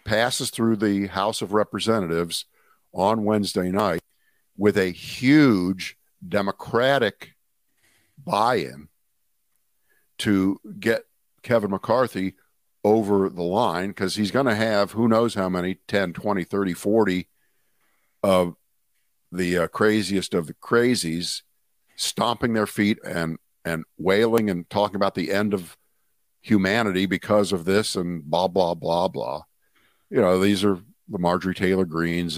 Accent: American